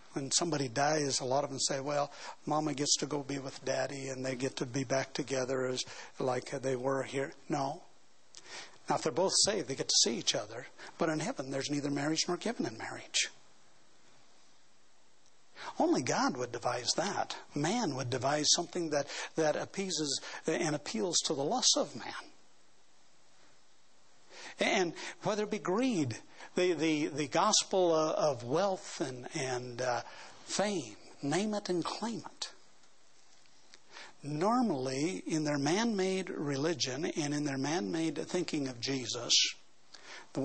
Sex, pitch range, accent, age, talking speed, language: male, 135-170 Hz, American, 60-79, 150 wpm, English